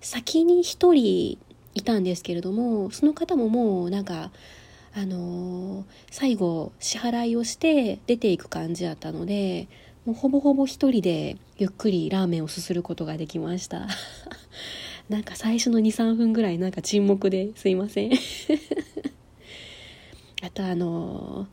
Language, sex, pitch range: Japanese, female, 180-230 Hz